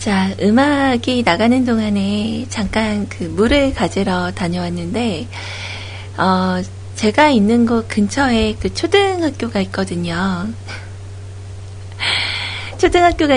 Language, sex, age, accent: Korean, female, 40-59, native